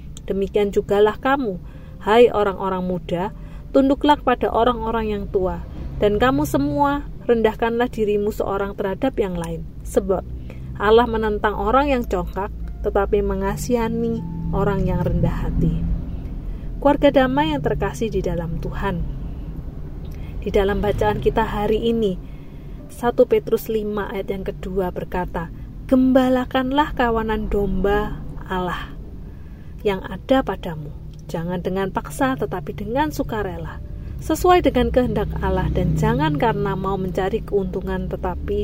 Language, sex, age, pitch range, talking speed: Indonesian, female, 30-49, 175-235 Hz, 120 wpm